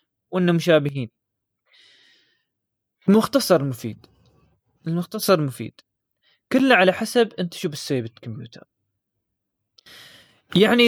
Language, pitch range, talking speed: Arabic, 135-185 Hz, 75 wpm